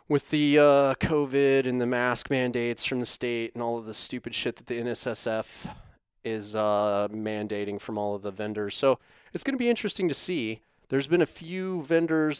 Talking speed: 195 wpm